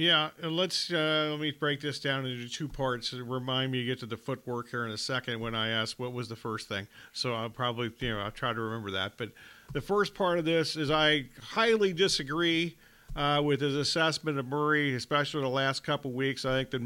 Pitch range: 135-160 Hz